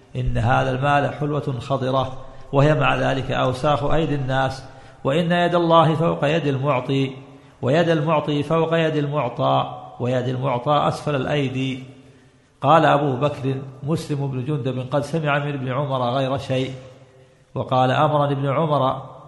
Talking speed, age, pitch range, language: 135 wpm, 40-59, 130-150 Hz, Arabic